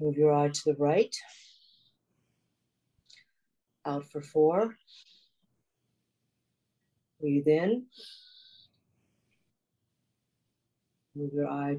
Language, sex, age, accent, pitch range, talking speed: English, female, 50-69, American, 145-195 Hz, 70 wpm